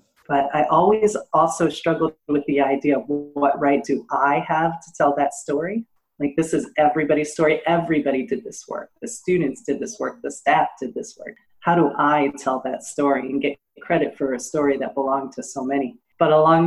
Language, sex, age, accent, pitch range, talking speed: English, female, 30-49, American, 140-160 Hz, 200 wpm